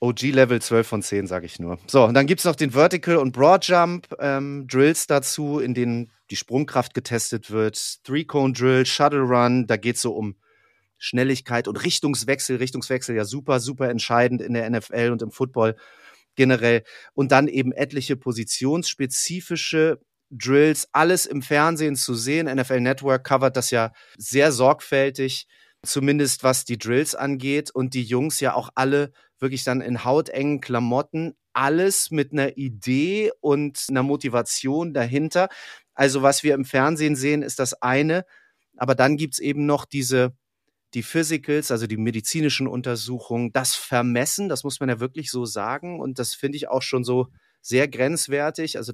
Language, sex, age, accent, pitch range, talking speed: German, male, 30-49, German, 120-145 Hz, 165 wpm